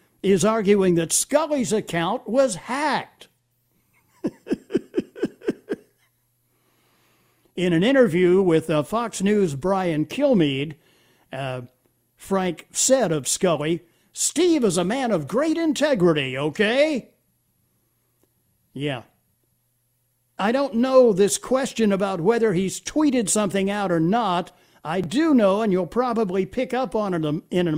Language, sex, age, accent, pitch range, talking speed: English, male, 60-79, American, 155-235 Hz, 120 wpm